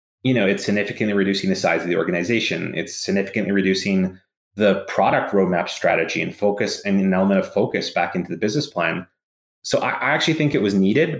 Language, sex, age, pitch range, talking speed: English, male, 30-49, 95-110 Hz, 195 wpm